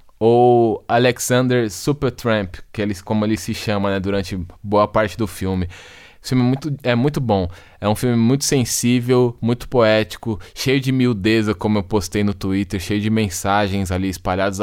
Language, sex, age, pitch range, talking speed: Portuguese, male, 20-39, 105-125 Hz, 170 wpm